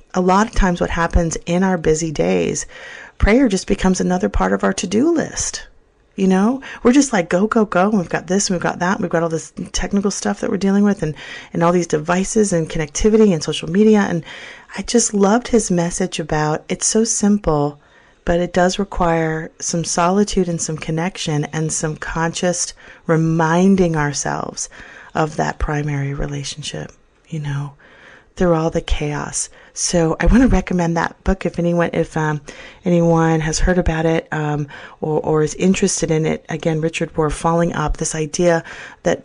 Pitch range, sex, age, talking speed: 160-195 Hz, female, 30-49, 180 wpm